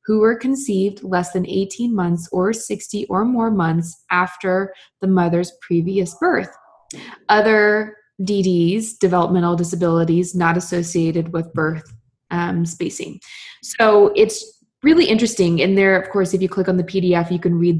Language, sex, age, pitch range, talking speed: English, female, 20-39, 175-210 Hz, 150 wpm